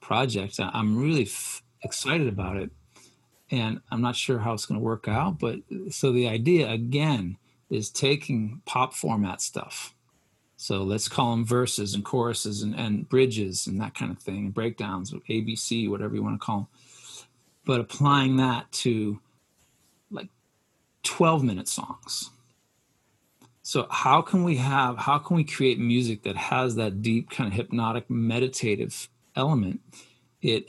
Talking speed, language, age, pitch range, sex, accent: 150 wpm, English, 40-59, 105-130 Hz, male, American